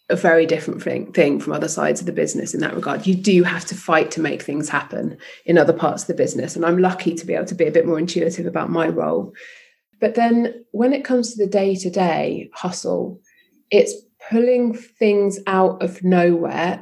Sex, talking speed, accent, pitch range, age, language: female, 210 wpm, British, 170-205 Hz, 30-49, English